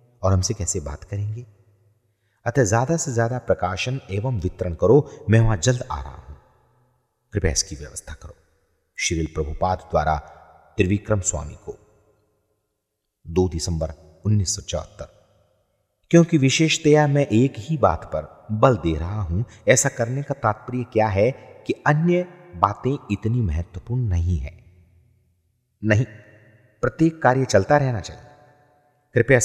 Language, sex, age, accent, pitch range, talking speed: English, male, 40-59, Indian, 90-120 Hz, 110 wpm